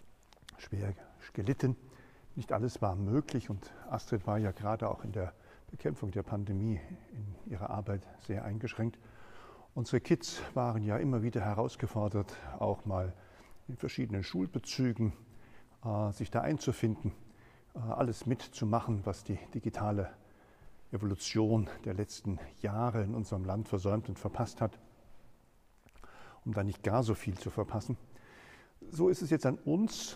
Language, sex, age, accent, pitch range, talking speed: German, male, 50-69, German, 105-120 Hz, 135 wpm